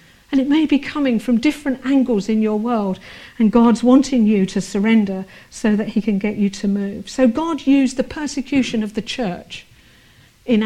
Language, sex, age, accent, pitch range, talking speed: English, female, 50-69, British, 215-260 Hz, 190 wpm